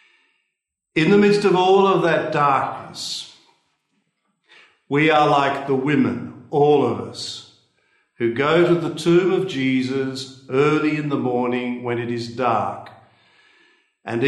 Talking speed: 135 wpm